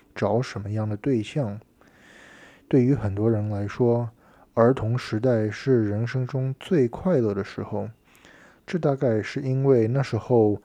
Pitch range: 105-130 Hz